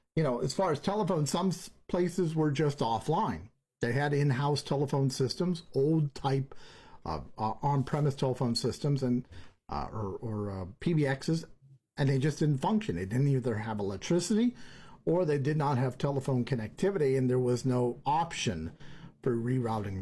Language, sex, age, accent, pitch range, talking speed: English, male, 50-69, American, 125-155 Hz, 155 wpm